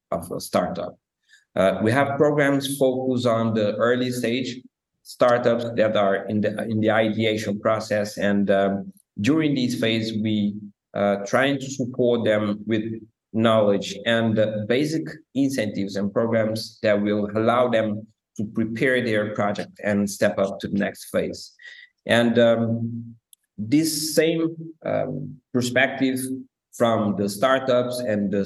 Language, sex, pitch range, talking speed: English, male, 105-125 Hz, 140 wpm